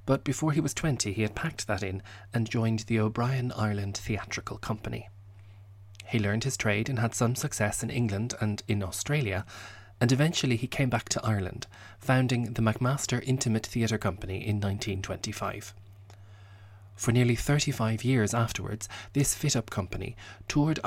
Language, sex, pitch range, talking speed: English, male, 100-120 Hz, 155 wpm